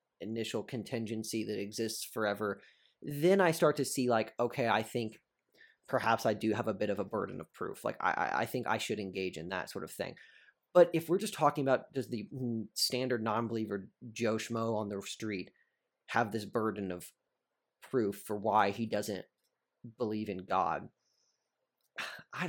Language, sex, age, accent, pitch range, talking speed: English, male, 30-49, American, 105-130 Hz, 175 wpm